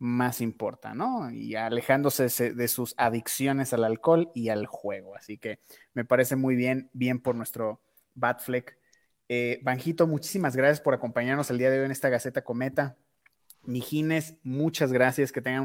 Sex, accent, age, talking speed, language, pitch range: male, Mexican, 30-49, 155 wpm, Spanish, 125-165 Hz